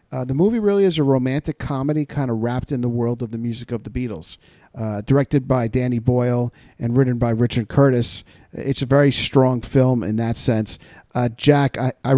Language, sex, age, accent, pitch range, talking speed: English, male, 50-69, American, 115-130 Hz, 205 wpm